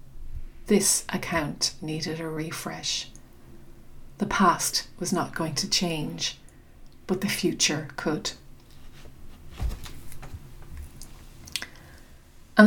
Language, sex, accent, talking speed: English, female, Irish, 80 wpm